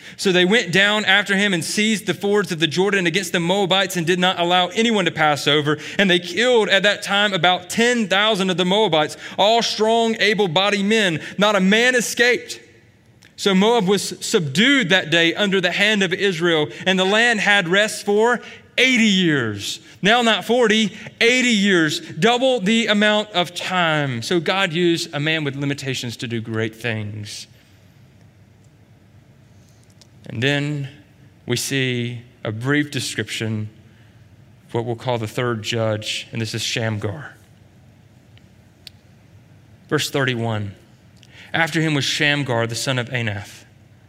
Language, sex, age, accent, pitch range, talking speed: English, male, 30-49, American, 115-195 Hz, 150 wpm